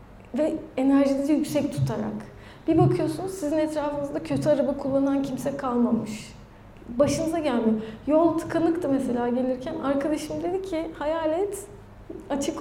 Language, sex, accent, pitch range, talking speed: Turkish, female, native, 240-310 Hz, 115 wpm